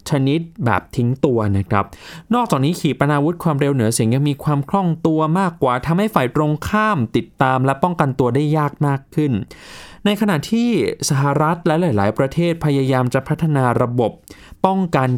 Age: 20-39